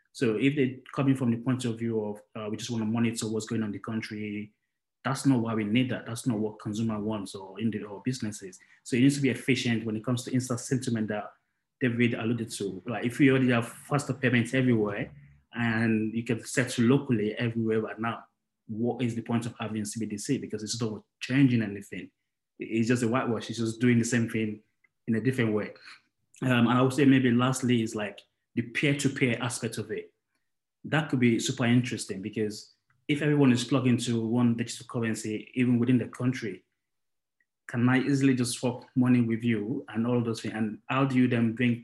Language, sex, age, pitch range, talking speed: English, male, 20-39, 110-125 Hz, 210 wpm